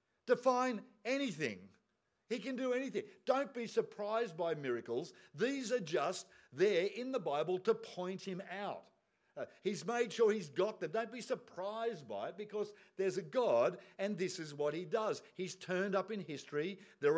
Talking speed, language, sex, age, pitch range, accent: 175 wpm, English, male, 50-69, 160-245 Hz, Australian